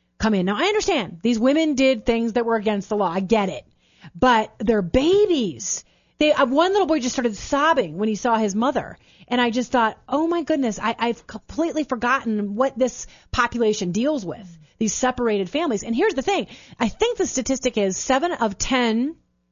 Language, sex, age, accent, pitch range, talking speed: English, female, 30-49, American, 200-265 Hz, 190 wpm